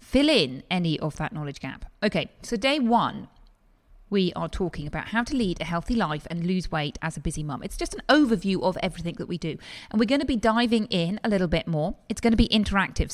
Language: English